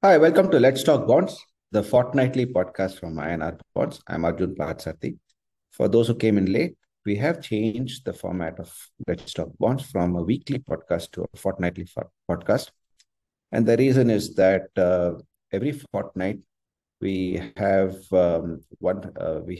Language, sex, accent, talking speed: English, male, Indian, 160 wpm